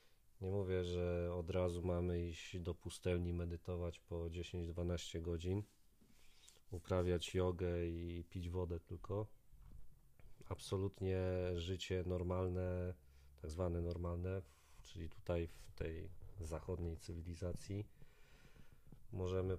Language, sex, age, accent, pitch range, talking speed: Polish, male, 40-59, native, 85-95 Hz, 100 wpm